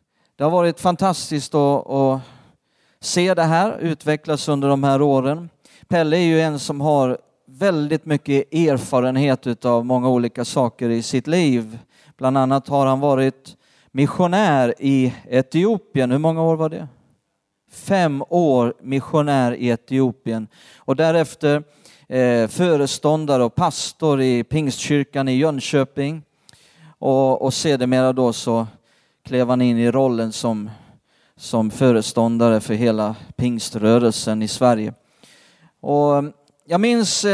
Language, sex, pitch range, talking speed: Swedish, male, 130-155 Hz, 125 wpm